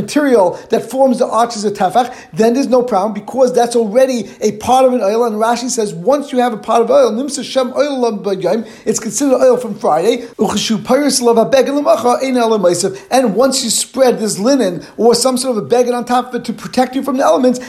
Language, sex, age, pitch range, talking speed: English, male, 50-69, 210-255 Hz, 190 wpm